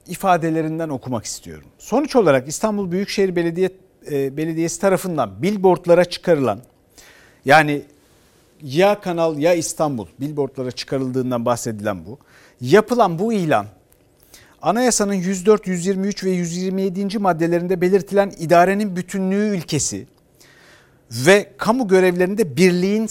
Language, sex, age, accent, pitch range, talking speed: Turkish, male, 60-79, native, 155-205 Hz, 100 wpm